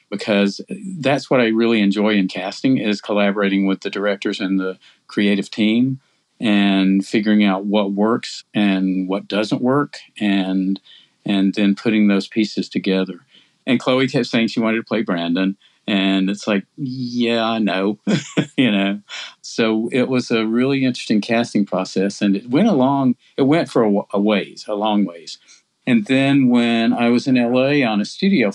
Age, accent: 50-69, American